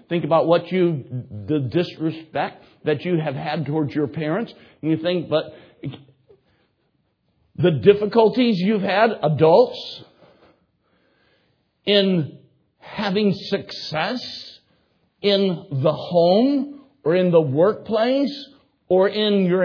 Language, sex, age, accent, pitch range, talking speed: English, male, 60-79, American, 145-200 Hz, 105 wpm